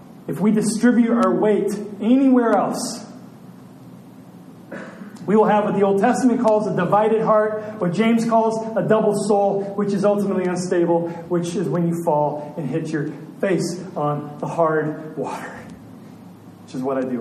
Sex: male